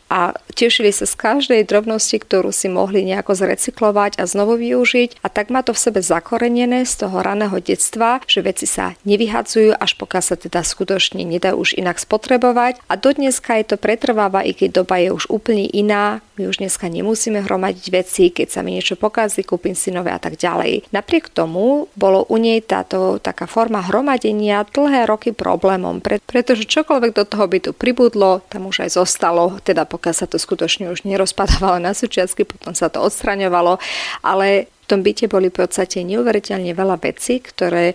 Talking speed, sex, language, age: 180 wpm, female, Slovak, 30-49